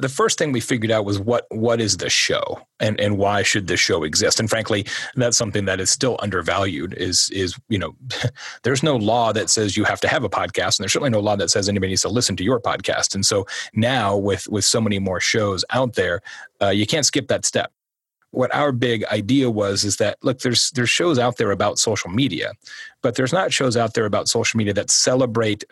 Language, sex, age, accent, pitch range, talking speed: English, male, 30-49, American, 100-115 Hz, 235 wpm